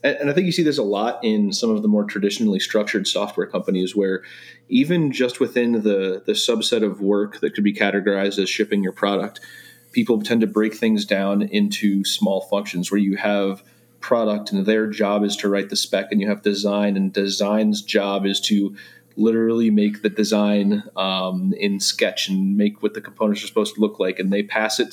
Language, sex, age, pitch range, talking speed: English, male, 30-49, 100-125 Hz, 205 wpm